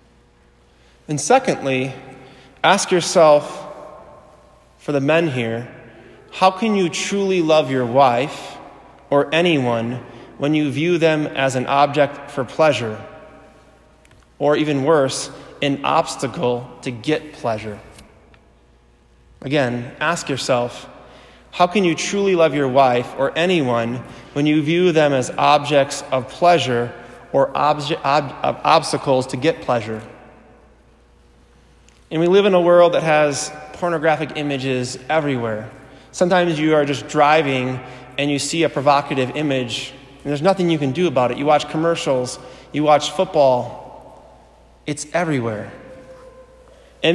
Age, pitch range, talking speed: 20-39, 130-165 Hz, 125 wpm